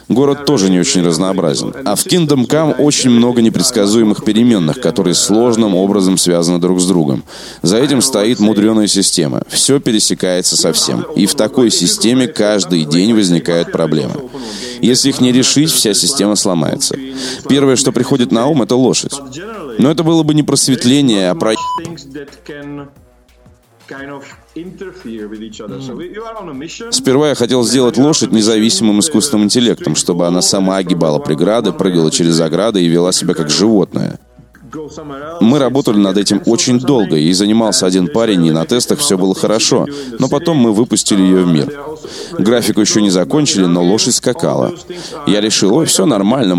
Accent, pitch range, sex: native, 95-140 Hz, male